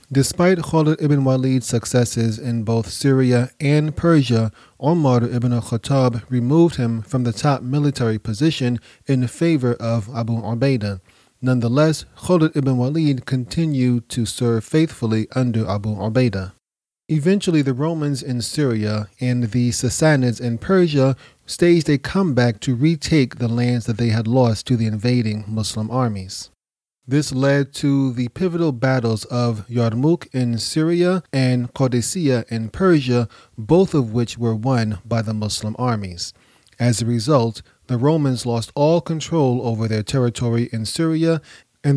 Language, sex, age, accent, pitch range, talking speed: English, male, 30-49, American, 115-145 Hz, 140 wpm